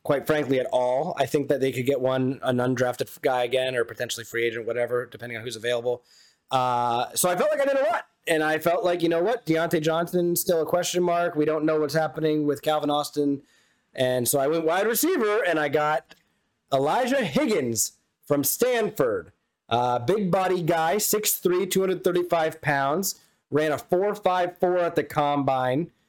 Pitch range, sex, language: 135-175 Hz, male, English